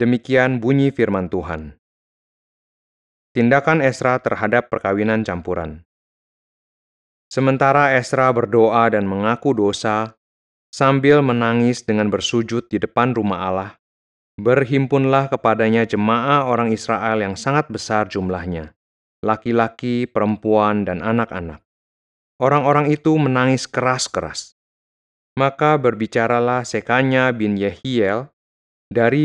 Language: Indonesian